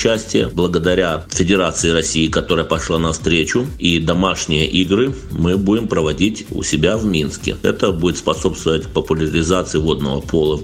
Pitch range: 85-110 Hz